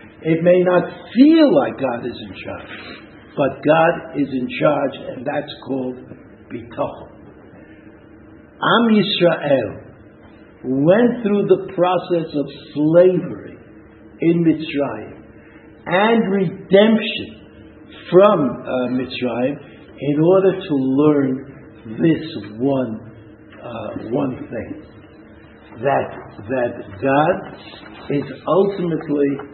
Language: English